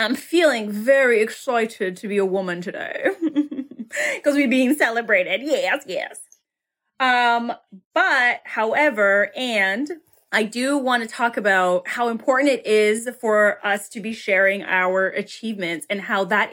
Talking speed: 140 wpm